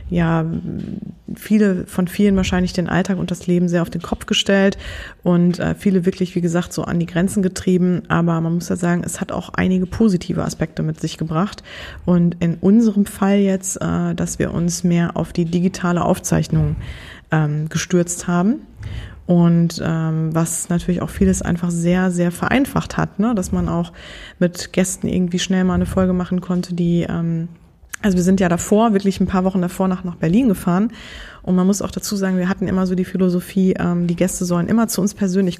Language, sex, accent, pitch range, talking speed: German, female, German, 170-190 Hz, 190 wpm